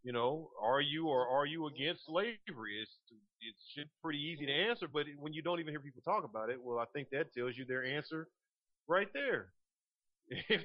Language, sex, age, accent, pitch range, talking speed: English, male, 40-59, American, 115-145 Hz, 205 wpm